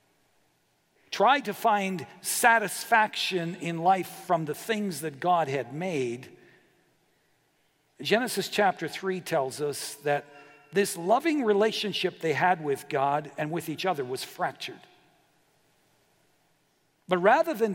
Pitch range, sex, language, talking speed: 150-200 Hz, male, English, 120 wpm